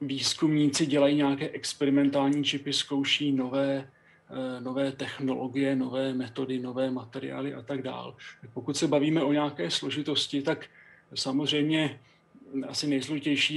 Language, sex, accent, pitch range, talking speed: Czech, male, native, 135-150 Hz, 115 wpm